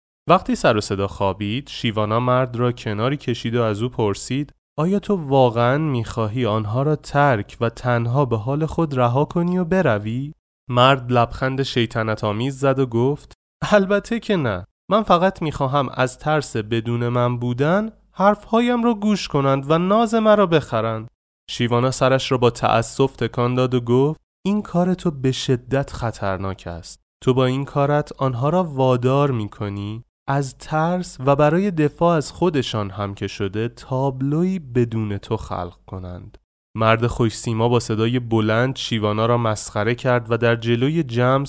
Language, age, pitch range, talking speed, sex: Persian, 20-39, 115-150 Hz, 160 wpm, male